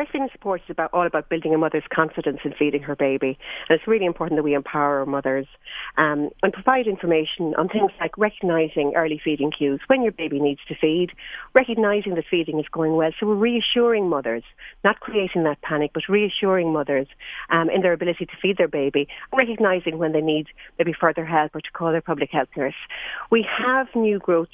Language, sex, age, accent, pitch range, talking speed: English, female, 40-59, Irish, 150-200 Hz, 200 wpm